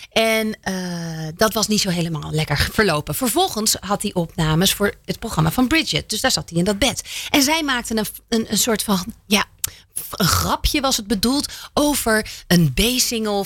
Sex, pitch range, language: female, 180-255 Hz, Dutch